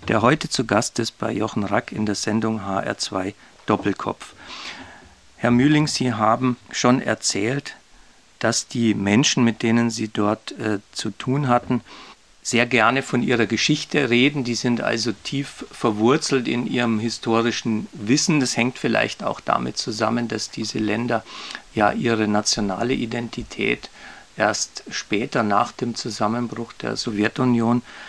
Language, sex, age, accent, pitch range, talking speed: German, male, 50-69, German, 115-135 Hz, 140 wpm